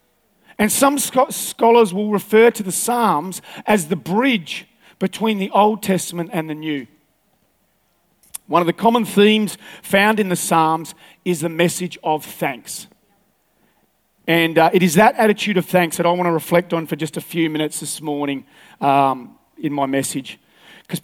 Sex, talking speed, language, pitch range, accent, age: male, 165 wpm, English, 175-225 Hz, Australian, 40-59